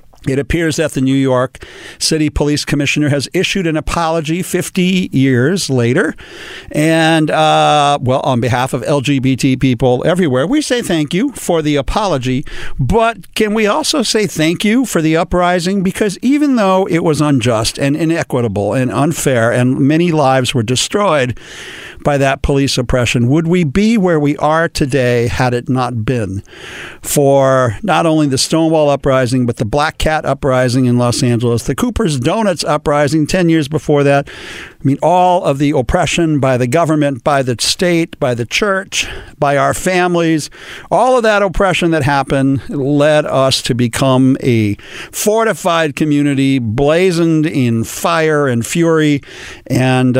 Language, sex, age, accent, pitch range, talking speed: English, male, 50-69, American, 130-170 Hz, 155 wpm